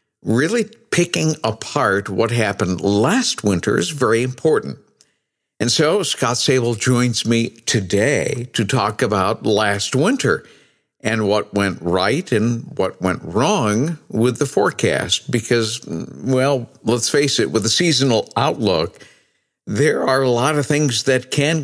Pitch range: 105-130 Hz